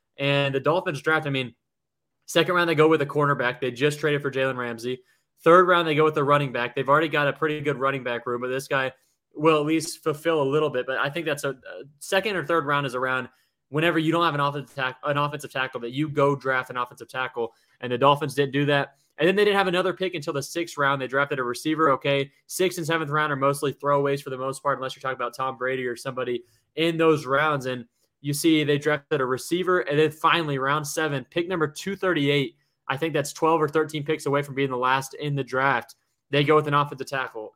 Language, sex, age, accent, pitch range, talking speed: English, male, 20-39, American, 130-155 Hz, 245 wpm